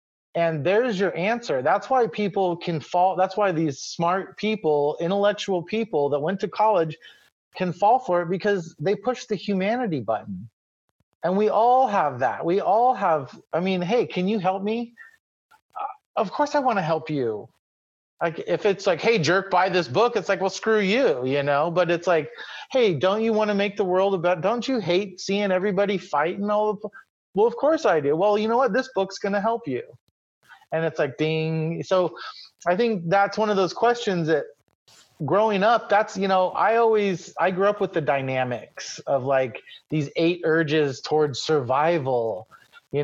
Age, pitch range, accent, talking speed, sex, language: 30-49, 155-210 Hz, American, 190 wpm, male, English